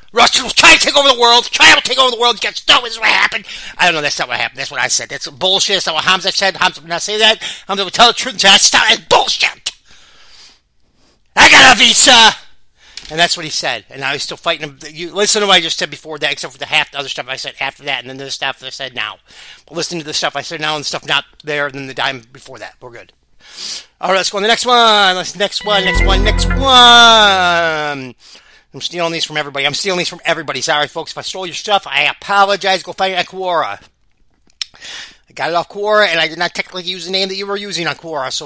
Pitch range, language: 150-195 Hz, English